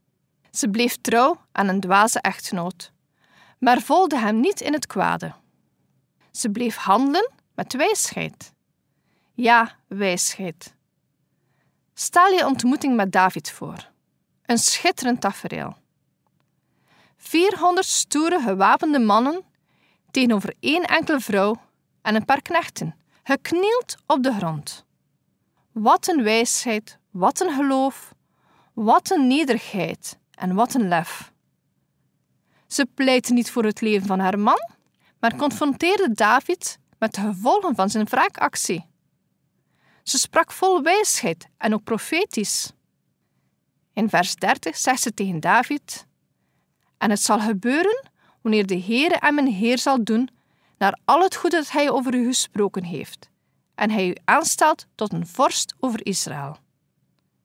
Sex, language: female, Dutch